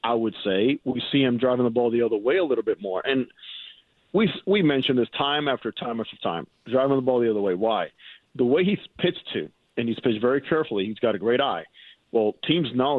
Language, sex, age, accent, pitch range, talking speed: English, male, 40-59, American, 115-140 Hz, 235 wpm